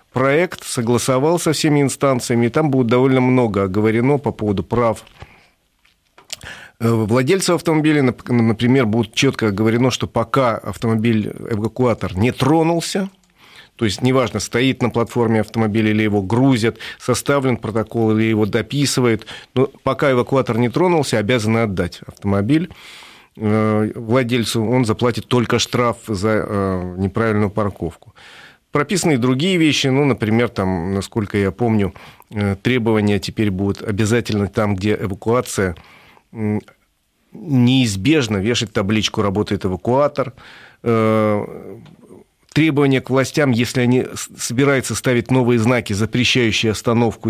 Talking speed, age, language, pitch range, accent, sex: 115 wpm, 40-59, Russian, 110-130 Hz, native, male